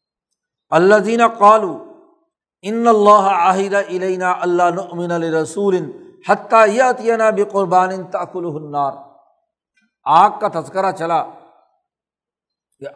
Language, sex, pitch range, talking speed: Urdu, male, 170-220 Hz, 65 wpm